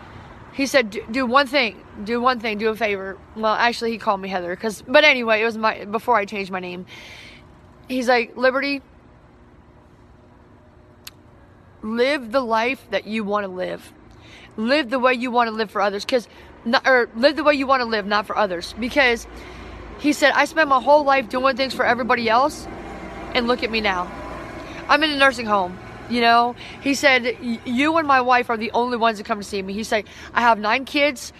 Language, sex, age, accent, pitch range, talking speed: English, female, 30-49, American, 215-270 Hz, 205 wpm